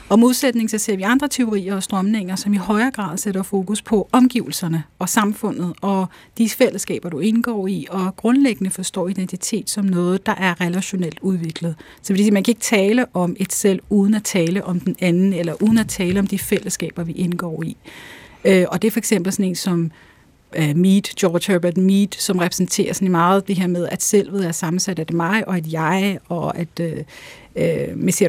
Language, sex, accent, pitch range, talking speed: Danish, female, native, 180-210 Hz, 195 wpm